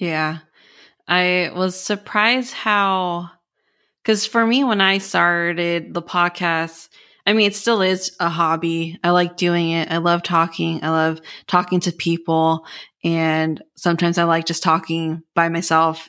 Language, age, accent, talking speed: English, 20-39, American, 150 wpm